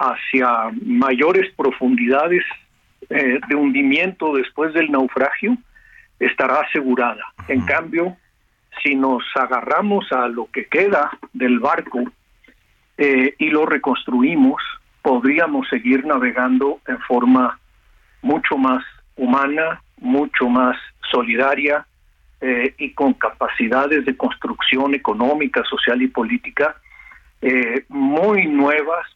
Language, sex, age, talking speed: Spanish, male, 50-69, 105 wpm